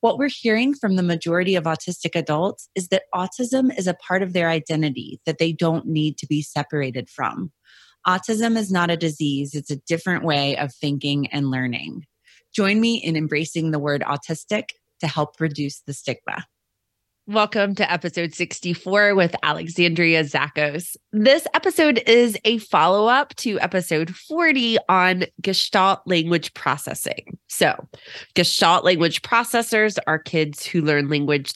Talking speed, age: 150 wpm, 20-39